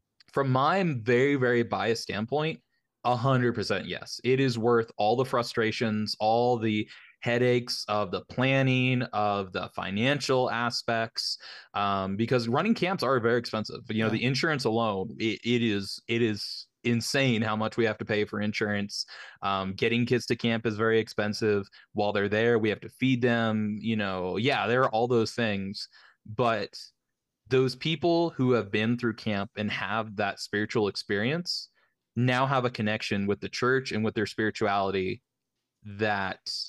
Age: 20-39